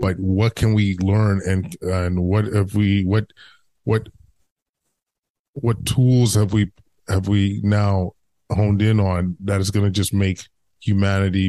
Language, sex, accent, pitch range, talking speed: English, male, American, 90-105 Hz, 155 wpm